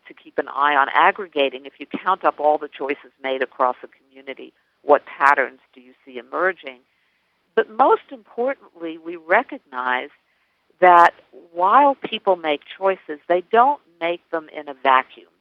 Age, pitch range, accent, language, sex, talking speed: 50-69, 130-180 Hz, American, English, female, 155 wpm